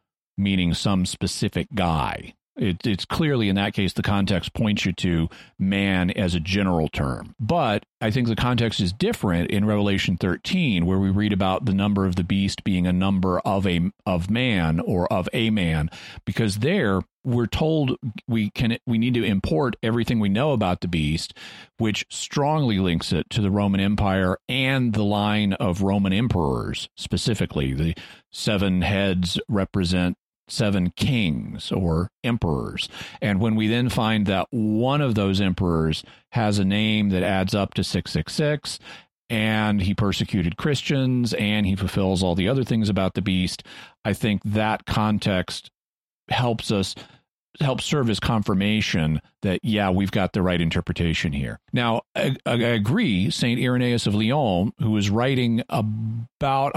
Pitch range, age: 95-115 Hz, 40-59